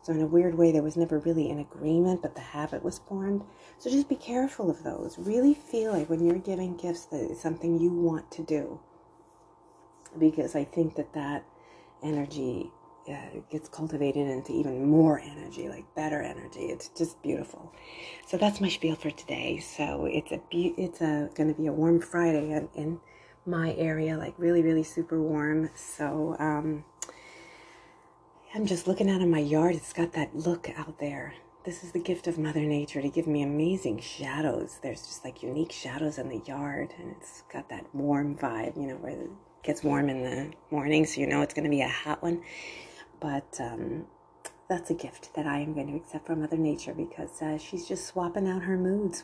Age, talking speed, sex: 30-49, 195 wpm, female